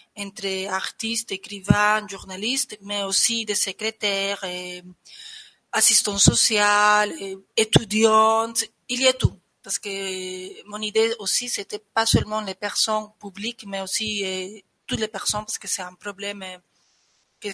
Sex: female